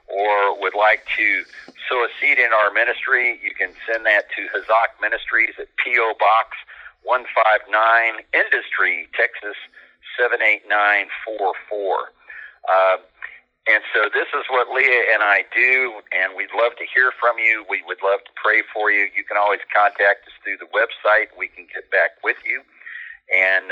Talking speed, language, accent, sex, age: 160 wpm, English, American, male, 50-69